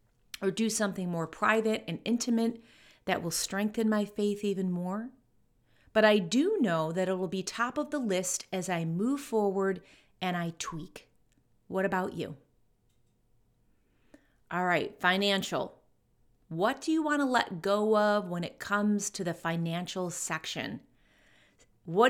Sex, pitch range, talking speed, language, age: female, 175-225 Hz, 150 wpm, English, 30-49